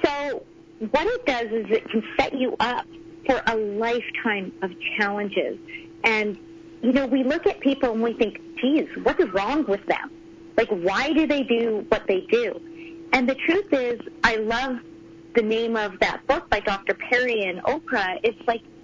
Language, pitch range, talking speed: English, 220-330 Hz, 180 wpm